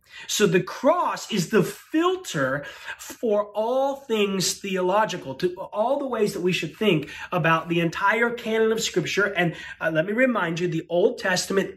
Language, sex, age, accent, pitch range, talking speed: English, male, 30-49, American, 165-230 Hz, 170 wpm